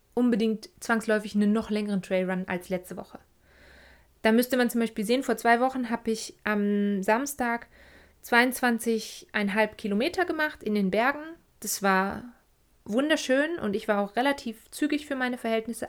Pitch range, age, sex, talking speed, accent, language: 205-245 Hz, 20-39, female, 150 wpm, German, German